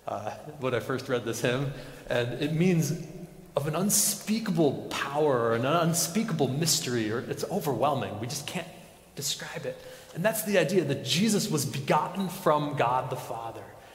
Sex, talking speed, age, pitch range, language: male, 165 wpm, 30-49, 125-170 Hz, English